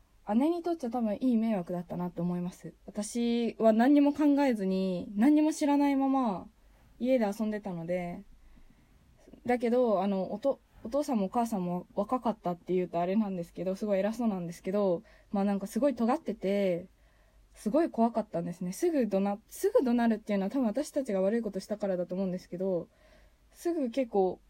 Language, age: Japanese, 20-39